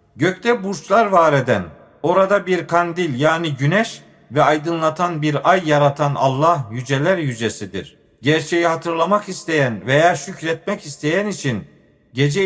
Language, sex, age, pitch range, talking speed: Turkish, male, 50-69, 145-175 Hz, 120 wpm